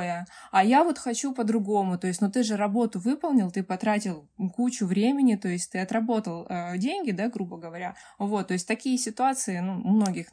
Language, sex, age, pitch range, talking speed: Russian, female, 20-39, 175-215 Hz, 190 wpm